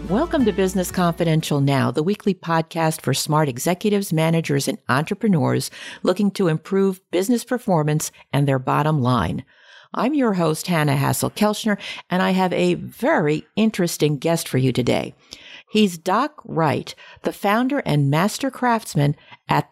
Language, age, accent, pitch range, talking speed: English, 50-69, American, 150-215 Hz, 145 wpm